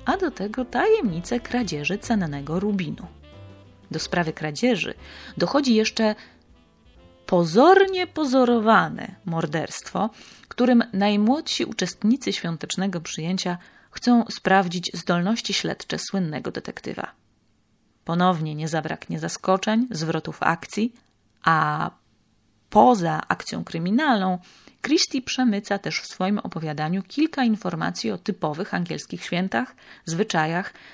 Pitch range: 160-225 Hz